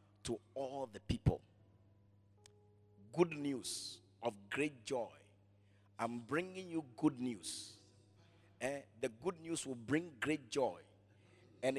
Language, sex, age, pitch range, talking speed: English, male, 50-69, 105-165 Hz, 115 wpm